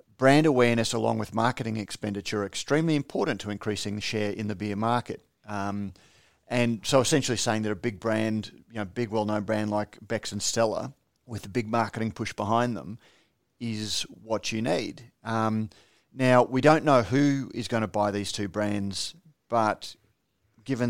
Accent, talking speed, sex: Australian, 175 wpm, male